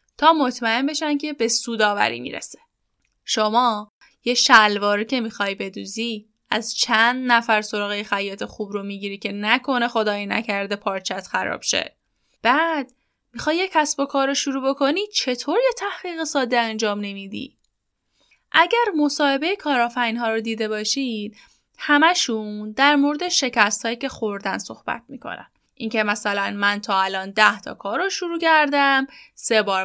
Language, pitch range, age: Persian, 215-295 Hz, 10-29